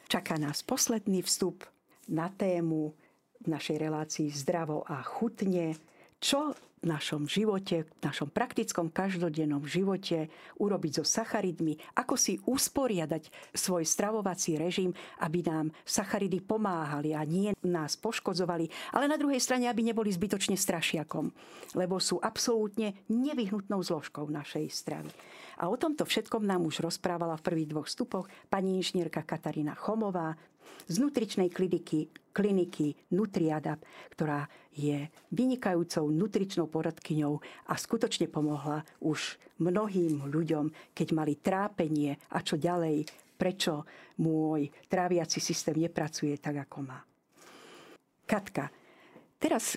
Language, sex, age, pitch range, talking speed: Slovak, female, 50-69, 160-205 Hz, 120 wpm